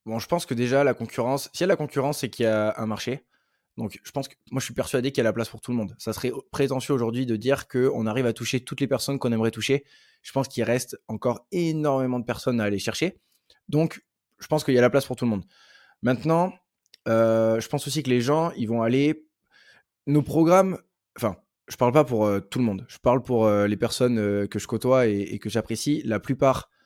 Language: French